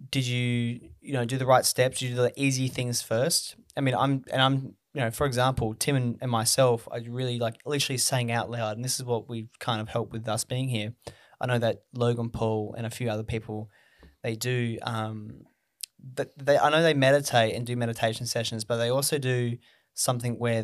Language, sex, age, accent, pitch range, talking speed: English, male, 20-39, Australian, 110-125 Hz, 220 wpm